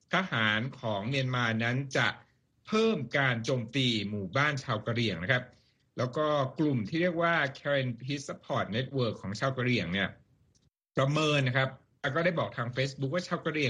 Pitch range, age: 115-145 Hz, 60-79